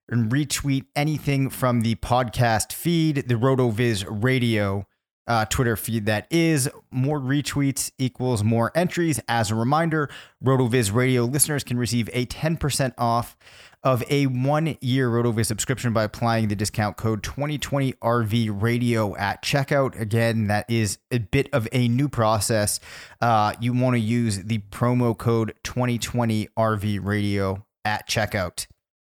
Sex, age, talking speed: male, 30-49, 135 wpm